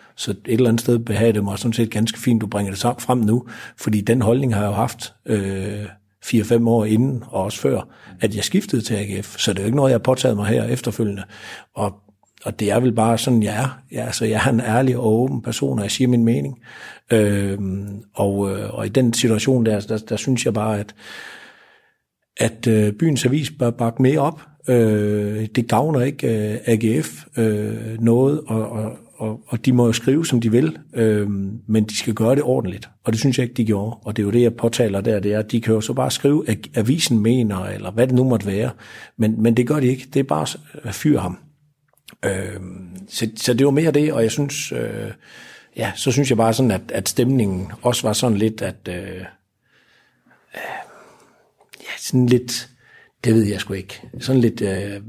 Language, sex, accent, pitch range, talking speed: Danish, male, native, 105-125 Hz, 220 wpm